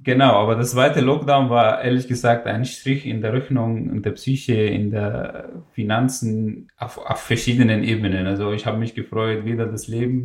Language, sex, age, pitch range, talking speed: German, male, 20-39, 110-125 Hz, 180 wpm